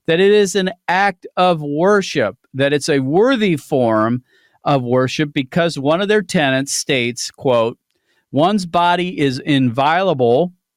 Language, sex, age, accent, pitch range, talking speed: English, male, 50-69, American, 125-175 Hz, 140 wpm